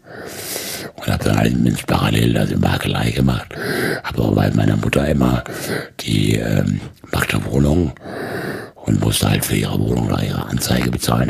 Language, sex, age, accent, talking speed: German, male, 60-79, German, 145 wpm